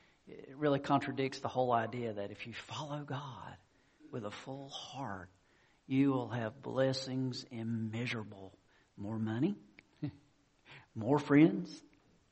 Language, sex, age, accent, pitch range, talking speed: English, male, 50-69, American, 100-145 Hz, 115 wpm